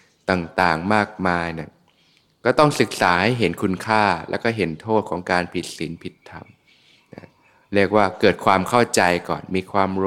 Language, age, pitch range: Thai, 20-39, 90-105 Hz